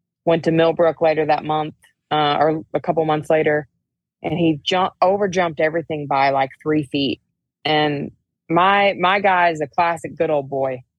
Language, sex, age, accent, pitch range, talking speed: English, female, 20-39, American, 150-170 Hz, 175 wpm